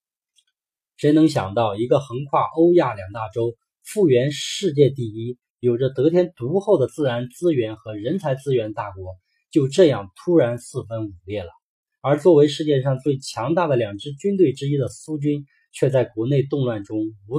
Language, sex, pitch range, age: Chinese, male, 115-155 Hz, 20-39